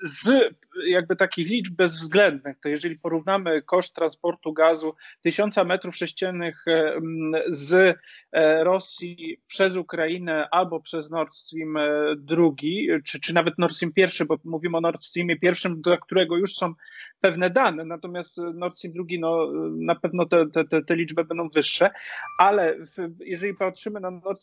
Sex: male